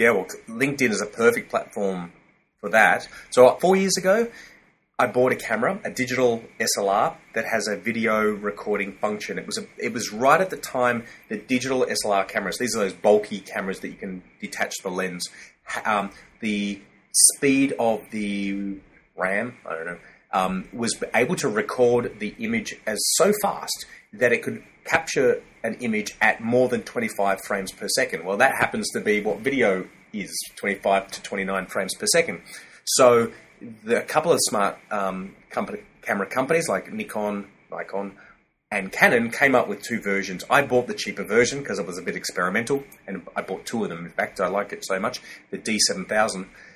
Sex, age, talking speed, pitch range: male, 30-49, 180 wpm, 100-130 Hz